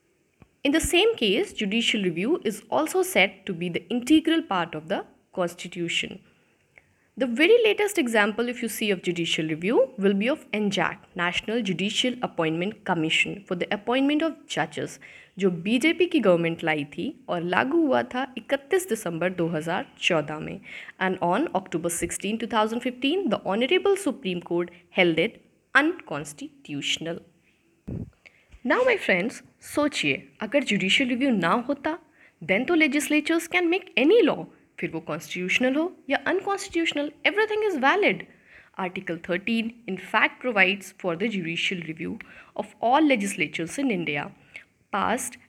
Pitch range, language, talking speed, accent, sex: 180-295 Hz, English, 140 wpm, Indian, female